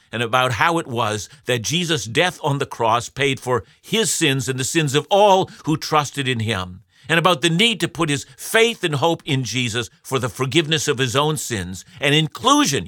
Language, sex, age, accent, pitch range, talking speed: English, male, 50-69, American, 115-155 Hz, 210 wpm